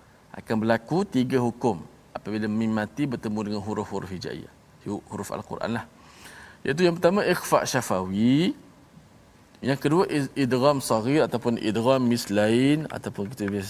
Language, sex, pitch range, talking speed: Malayalam, male, 105-140 Hz, 125 wpm